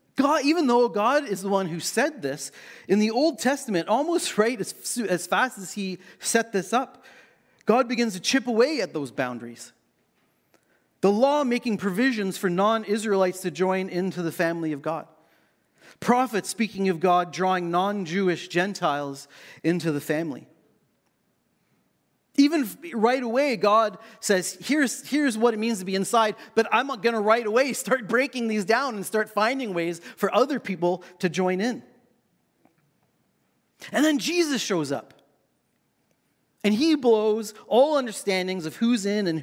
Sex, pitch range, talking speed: male, 180-240 Hz, 155 wpm